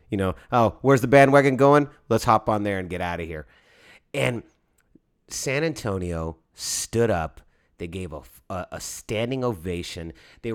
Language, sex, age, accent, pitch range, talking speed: English, male, 30-49, American, 85-130 Hz, 165 wpm